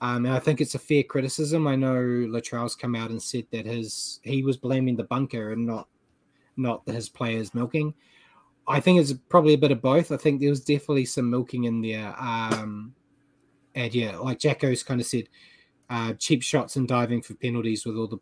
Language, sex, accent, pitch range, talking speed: English, male, Australian, 120-140 Hz, 210 wpm